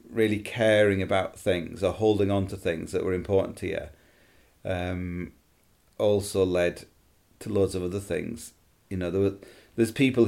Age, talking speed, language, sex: 40-59, 165 wpm, English, male